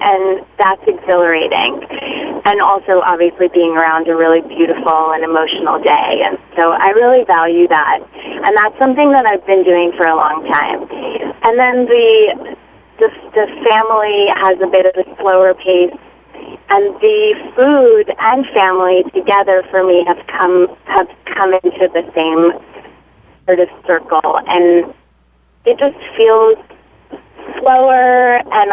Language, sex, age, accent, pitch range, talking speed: English, female, 30-49, American, 175-250 Hz, 140 wpm